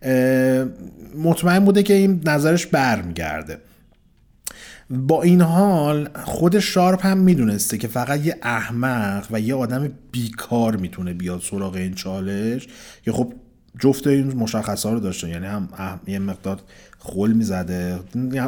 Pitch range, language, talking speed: 110-175 Hz, Persian, 130 wpm